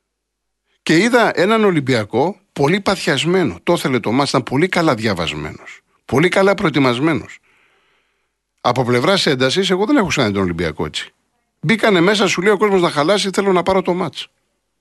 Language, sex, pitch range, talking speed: Greek, male, 125-190 Hz, 160 wpm